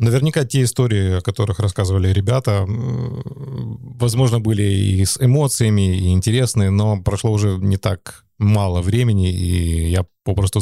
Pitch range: 95-125 Hz